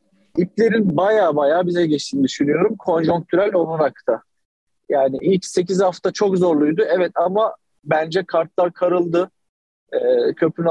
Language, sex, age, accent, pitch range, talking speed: Turkish, male, 40-59, native, 150-190 Hz, 125 wpm